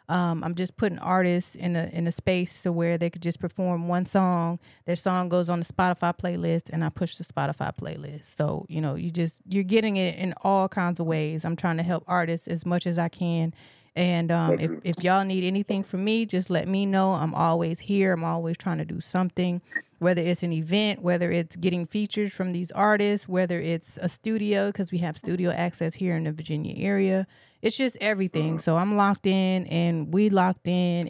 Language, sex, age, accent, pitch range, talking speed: English, female, 30-49, American, 165-185 Hz, 215 wpm